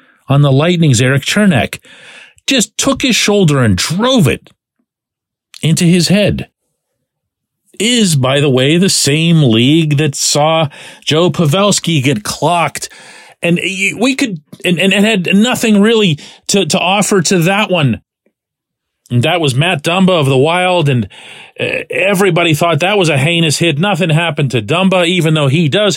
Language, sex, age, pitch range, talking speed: English, male, 40-59, 135-195 Hz, 150 wpm